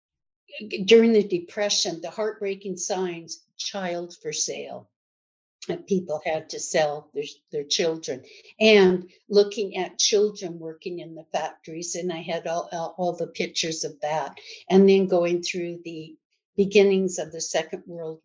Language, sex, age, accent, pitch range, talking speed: English, female, 60-79, American, 165-195 Hz, 145 wpm